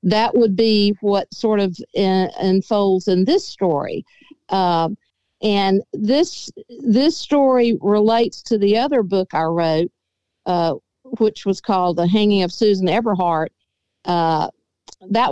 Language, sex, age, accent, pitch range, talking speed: English, female, 50-69, American, 190-235 Hz, 135 wpm